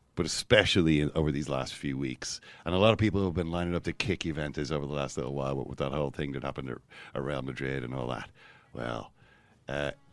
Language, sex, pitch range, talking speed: English, male, 80-130 Hz, 220 wpm